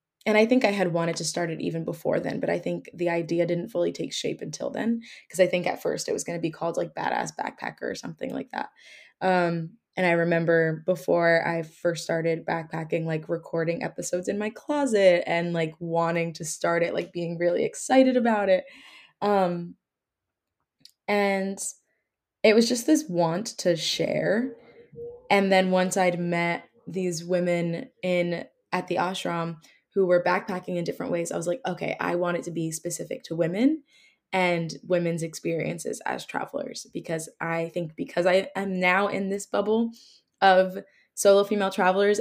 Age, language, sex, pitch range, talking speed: 20-39, English, female, 170-195 Hz, 175 wpm